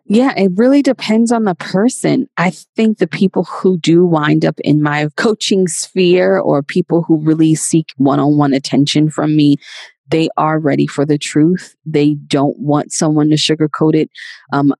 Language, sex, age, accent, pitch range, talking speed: English, female, 20-39, American, 145-180 Hz, 170 wpm